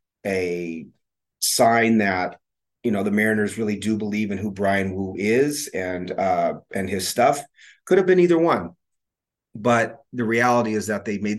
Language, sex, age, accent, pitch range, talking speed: English, male, 30-49, American, 95-115 Hz, 170 wpm